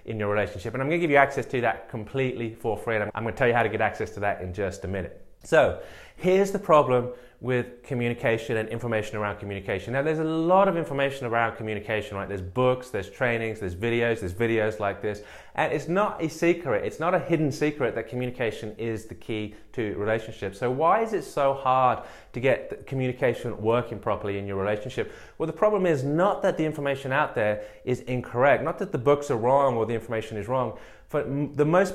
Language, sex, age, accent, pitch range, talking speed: English, male, 20-39, British, 110-145 Hz, 215 wpm